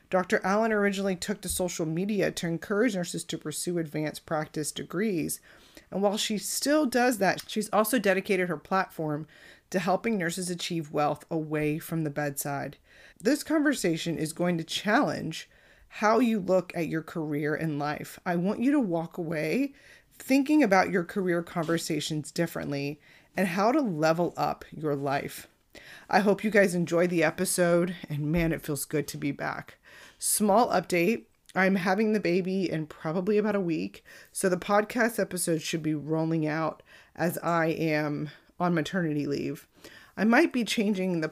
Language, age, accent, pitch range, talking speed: English, 30-49, American, 155-200 Hz, 165 wpm